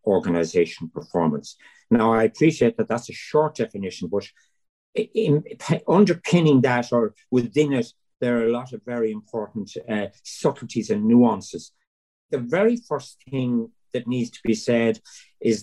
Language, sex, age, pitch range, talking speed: English, male, 50-69, 105-135 Hz, 145 wpm